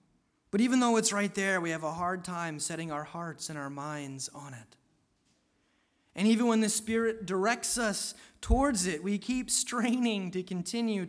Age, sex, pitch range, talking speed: 30-49, male, 165-225 Hz, 180 wpm